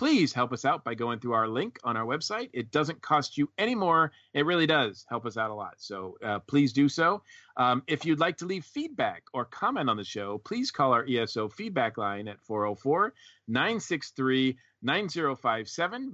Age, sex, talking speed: 40-59, male, 190 wpm